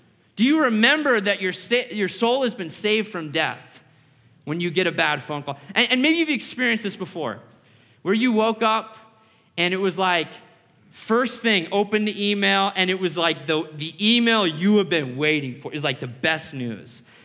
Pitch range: 150-225 Hz